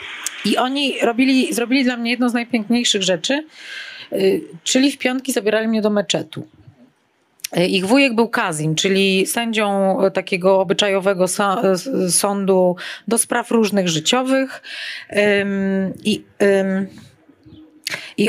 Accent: native